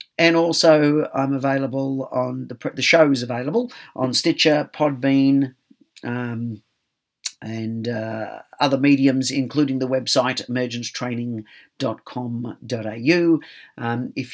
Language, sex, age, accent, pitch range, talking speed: English, male, 50-69, Australian, 120-140 Hz, 90 wpm